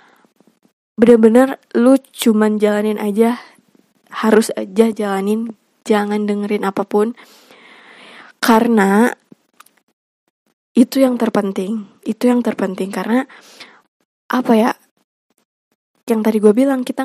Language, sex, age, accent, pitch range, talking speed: Indonesian, female, 20-39, native, 210-235 Hz, 95 wpm